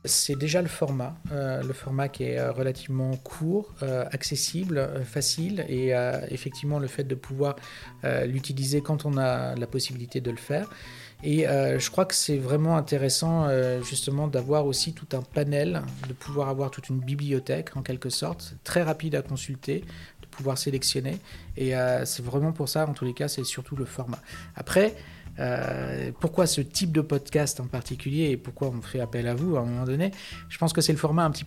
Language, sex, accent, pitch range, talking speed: French, male, French, 125-145 Hz, 200 wpm